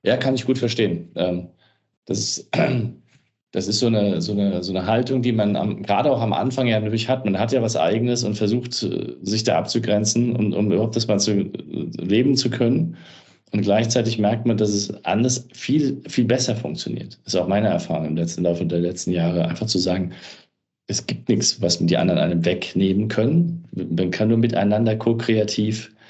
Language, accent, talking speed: German, German, 195 wpm